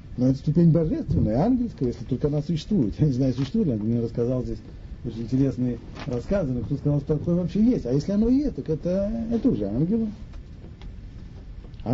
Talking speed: 190 wpm